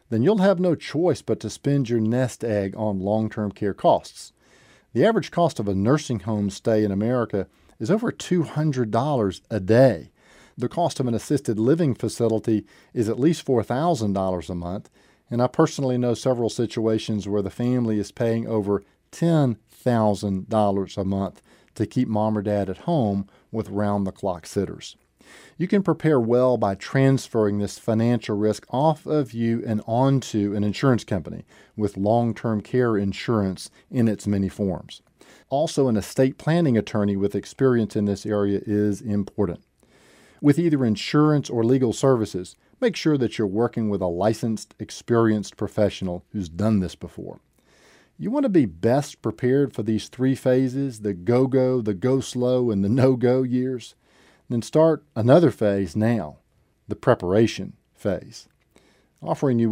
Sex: male